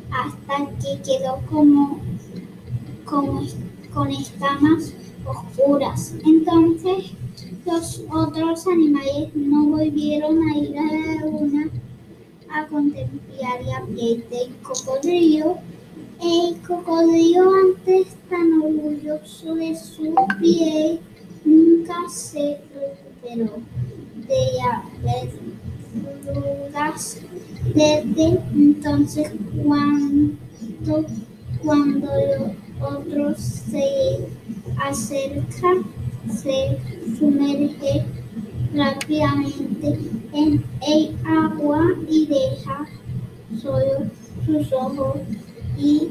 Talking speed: 75 wpm